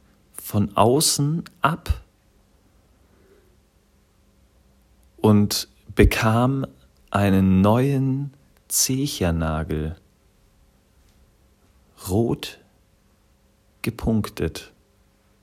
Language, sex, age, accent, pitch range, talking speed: German, male, 40-59, German, 90-120 Hz, 40 wpm